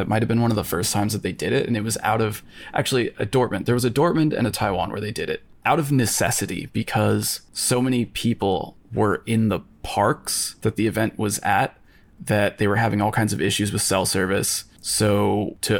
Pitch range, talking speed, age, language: 100-115 Hz, 230 wpm, 20-39, English